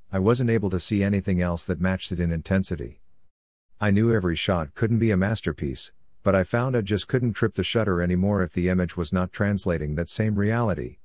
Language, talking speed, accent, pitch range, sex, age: English, 210 wpm, American, 85-105 Hz, male, 50-69